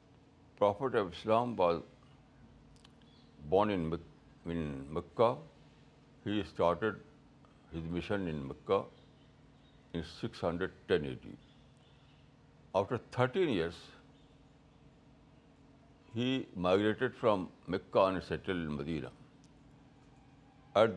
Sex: male